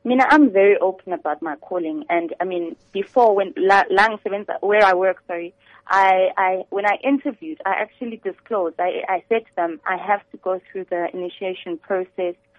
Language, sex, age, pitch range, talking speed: English, female, 20-39, 190-230 Hz, 185 wpm